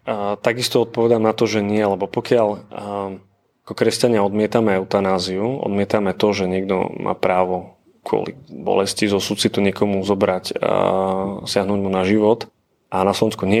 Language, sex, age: Slovak, male, 30-49